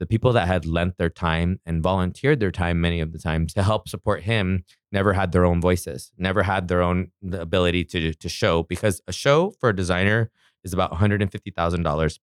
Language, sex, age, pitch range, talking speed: English, male, 20-39, 85-95 Hz, 200 wpm